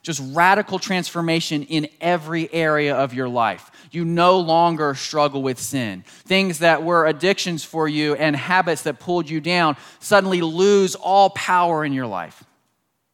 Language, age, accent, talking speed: English, 30-49, American, 155 wpm